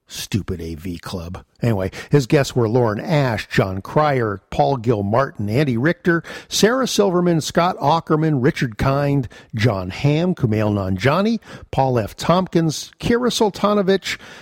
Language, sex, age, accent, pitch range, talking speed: English, male, 50-69, American, 110-160 Hz, 125 wpm